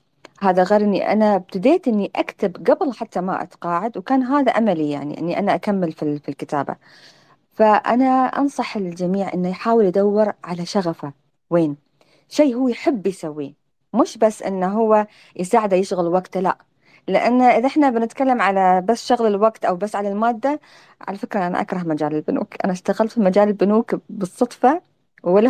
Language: Arabic